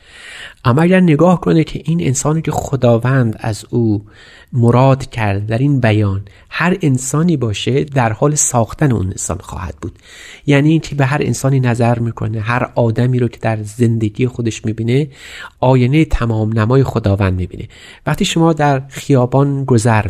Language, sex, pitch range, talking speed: Persian, male, 110-135 Hz, 155 wpm